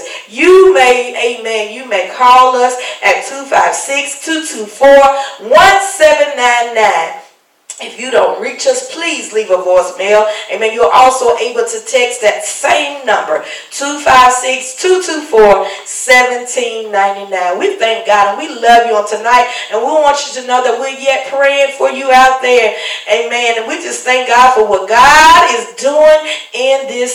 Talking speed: 145 wpm